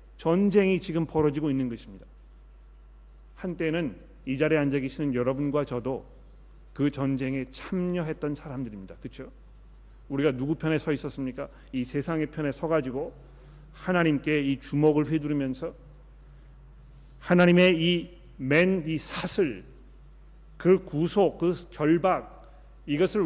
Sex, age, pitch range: male, 40-59, 130-170 Hz